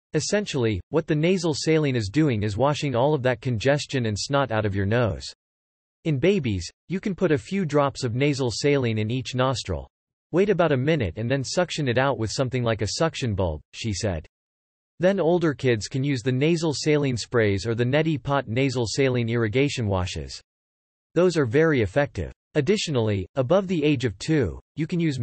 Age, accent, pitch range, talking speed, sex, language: 40-59, American, 110-155 Hz, 190 wpm, male, English